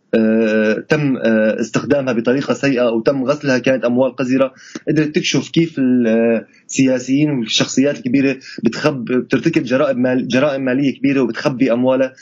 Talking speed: 125 wpm